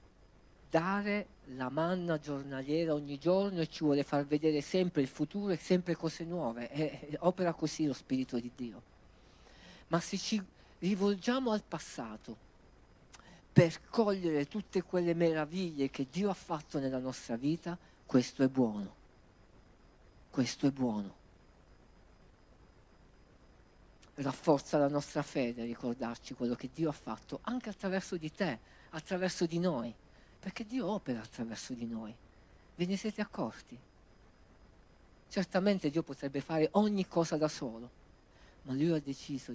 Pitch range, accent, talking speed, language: 120-175 Hz, native, 130 wpm, Italian